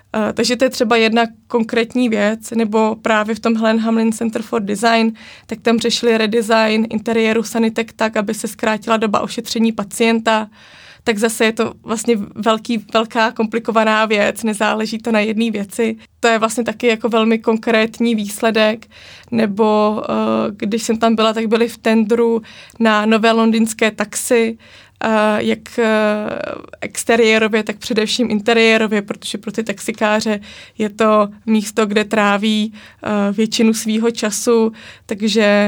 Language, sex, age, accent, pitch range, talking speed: Czech, female, 20-39, native, 215-230 Hz, 145 wpm